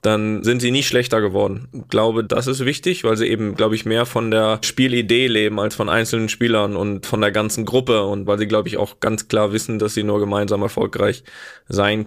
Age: 20-39